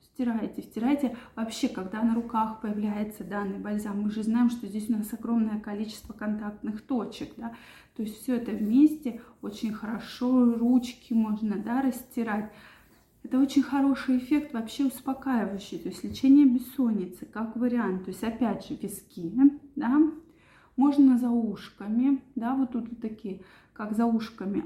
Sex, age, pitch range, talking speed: female, 30-49, 215-255 Hz, 150 wpm